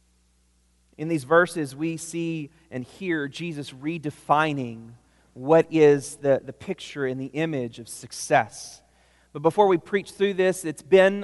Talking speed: 145 wpm